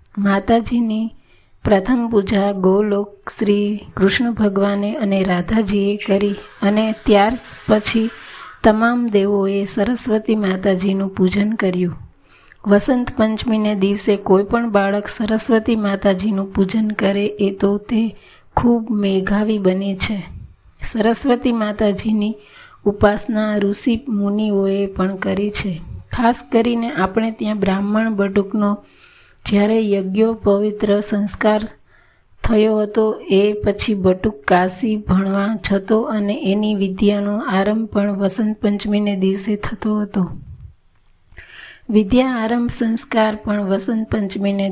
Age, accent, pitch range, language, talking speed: 30-49, native, 195-220 Hz, Gujarati, 85 wpm